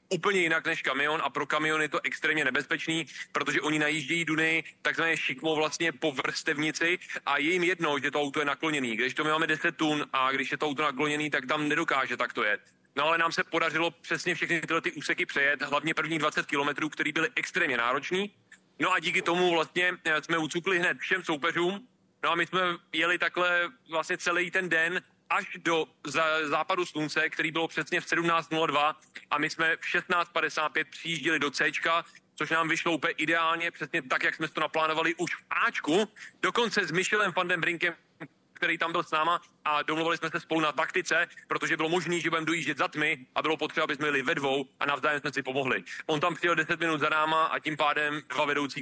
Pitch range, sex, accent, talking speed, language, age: 145-170 Hz, male, native, 205 wpm, Czech, 30-49